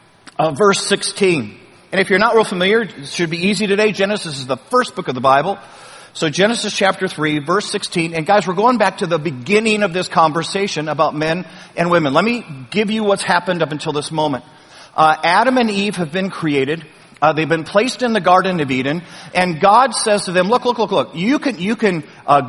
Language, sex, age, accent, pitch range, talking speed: English, male, 50-69, American, 160-210 Hz, 220 wpm